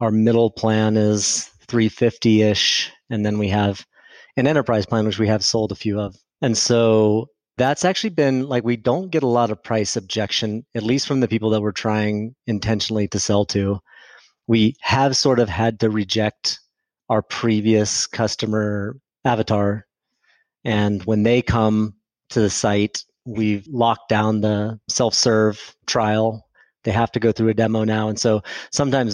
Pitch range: 105-115 Hz